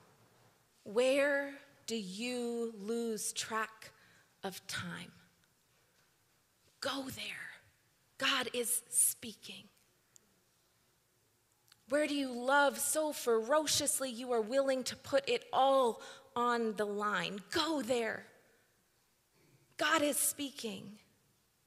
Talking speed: 90 wpm